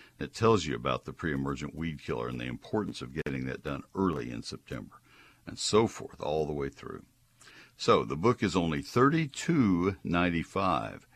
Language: English